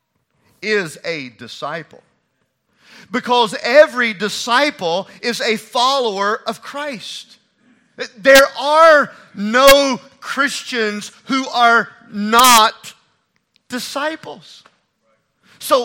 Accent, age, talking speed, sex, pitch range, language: American, 40-59, 75 wpm, male, 200-255 Hz, English